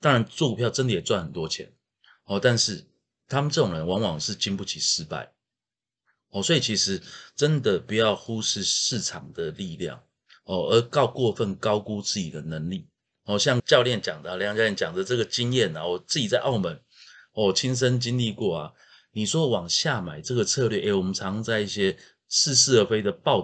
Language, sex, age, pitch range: Chinese, male, 30-49, 95-125 Hz